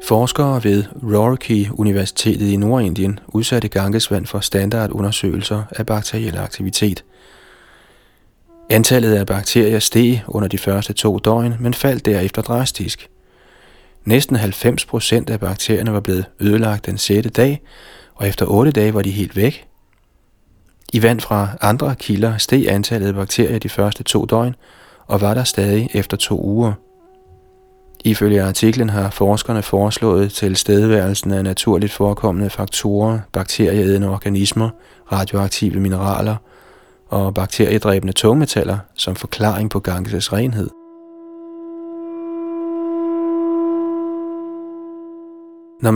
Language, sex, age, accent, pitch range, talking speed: Danish, male, 30-49, native, 100-120 Hz, 115 wpm